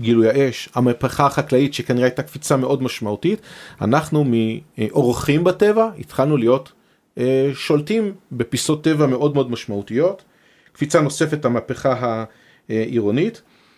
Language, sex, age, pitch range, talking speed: Hebrew, male, 30-49, 120-155 Hz, 105 wpm